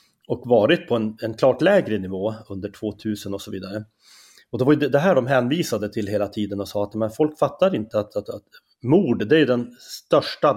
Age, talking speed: 30-49, 220 wpm